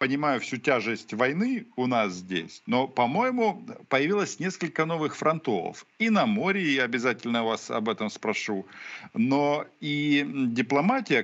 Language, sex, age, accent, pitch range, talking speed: Ukrainian, male, 50-69, native, 110-175 Hz, 135 wpm